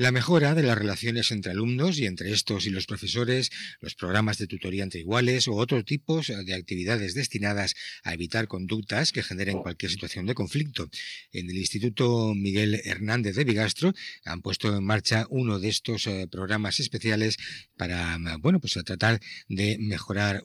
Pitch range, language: 95-115 Hz, English